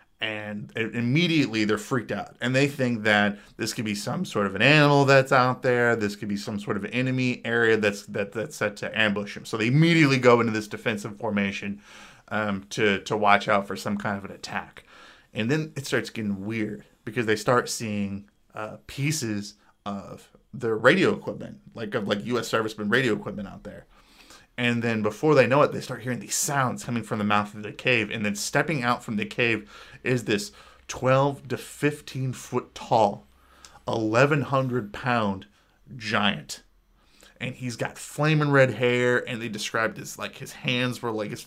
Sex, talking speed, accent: male, 190 wpm, American